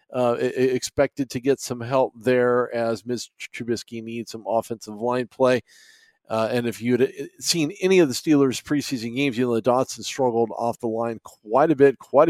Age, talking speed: 50-69, 190 wpm